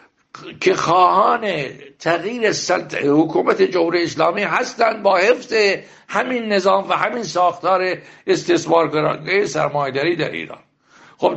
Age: 60-79